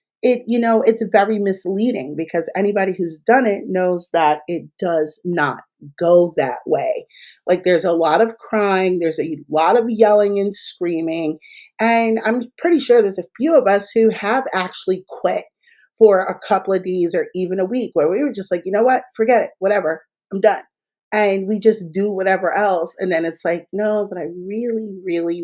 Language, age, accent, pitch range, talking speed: English, 30-49, American, 175-230 Hz, 195 wpm